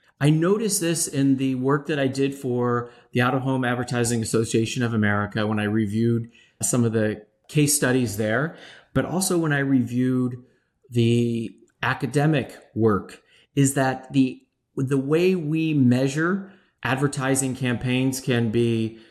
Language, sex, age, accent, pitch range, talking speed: English, male, 40-59, American, 115-135 Hz, 145 wpm